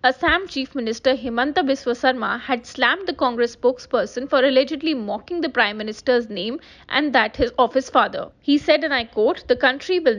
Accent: Indian